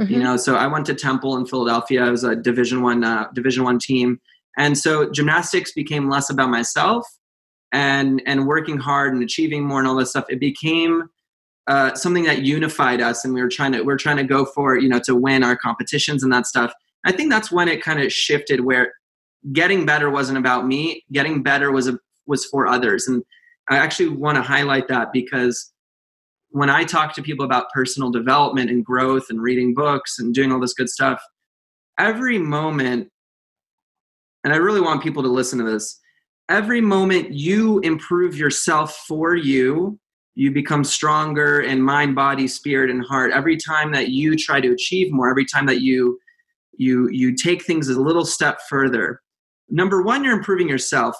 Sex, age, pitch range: male, 20-39, 130-160 Hz